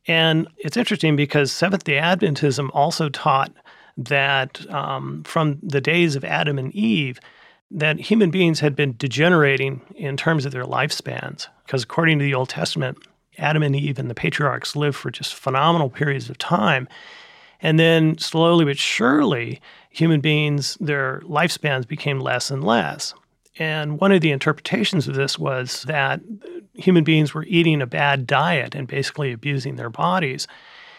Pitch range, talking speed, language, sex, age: 140-165 Hz, 155 wpm, English, male, 40-59